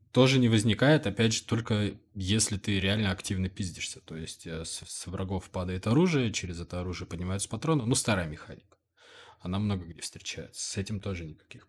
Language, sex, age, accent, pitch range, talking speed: Russian, male, 20-39, native, 95-115 Hz, 180 wpm